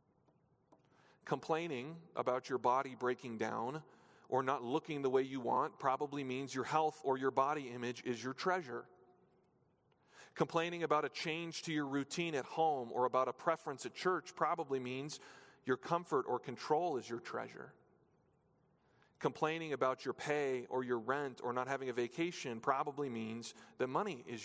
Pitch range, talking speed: 130-180 Hz, 160 wpm